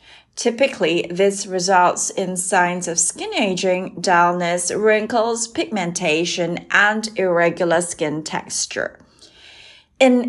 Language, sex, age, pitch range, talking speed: English, female, 30-49, 180-240 Hz, 95 wpm